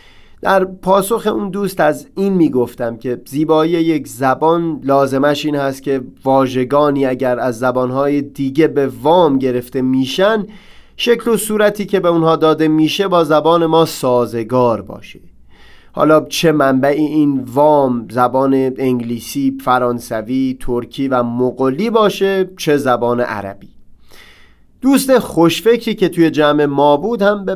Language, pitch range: Persian, 130-170 Hz